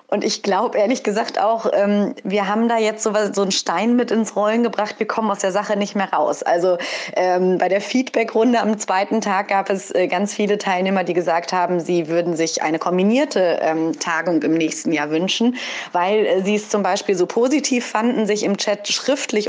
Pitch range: 180-220 Hz